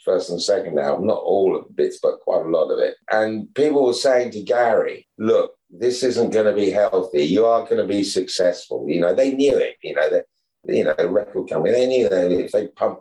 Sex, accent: male, British